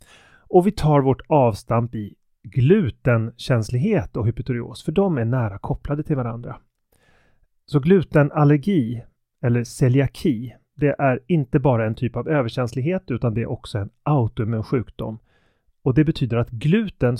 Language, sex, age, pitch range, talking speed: Swedish, male, 30-49, 115-145 Hz, 140 wpm